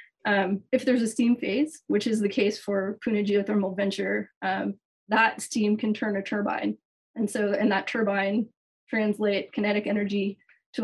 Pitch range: 200-230 Hz